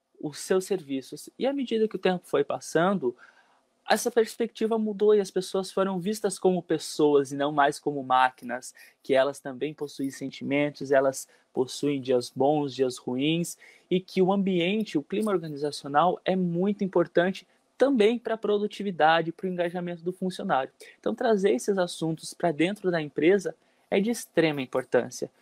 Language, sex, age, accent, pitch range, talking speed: Portuguese, male, 20-39, Brazilian, 140-200 Hz, 160 wpm